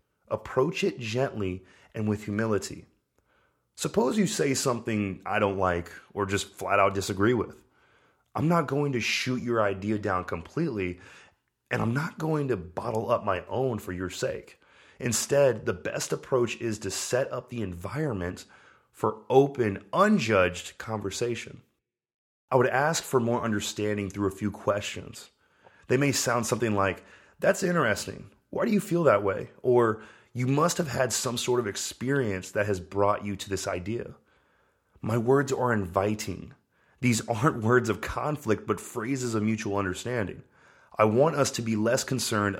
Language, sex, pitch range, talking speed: English, male, 100-125 Hz, 160 wpm